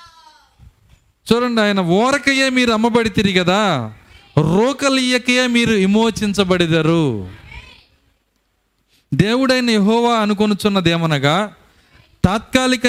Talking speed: 70 wpm